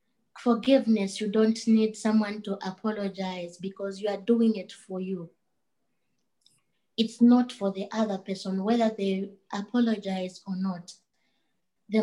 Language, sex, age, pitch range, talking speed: English, female, 20-39, 195-225 Hz, 130 wpm